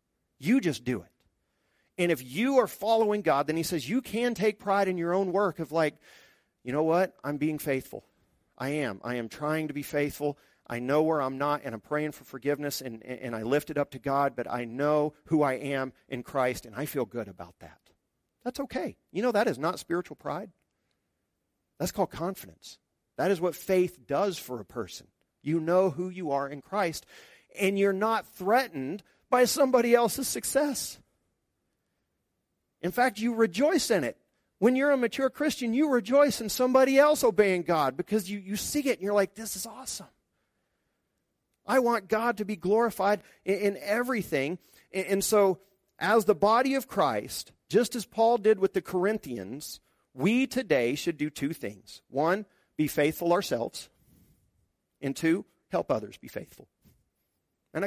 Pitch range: 145-225 Hz